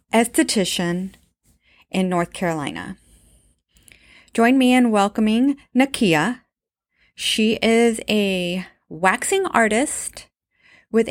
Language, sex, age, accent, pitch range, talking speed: English, female, 30-49, American, 175-250 Hz, 80 wpm